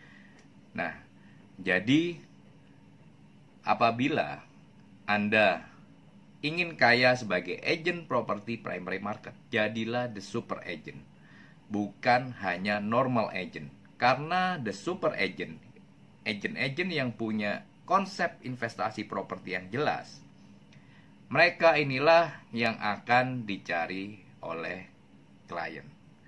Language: Indonesian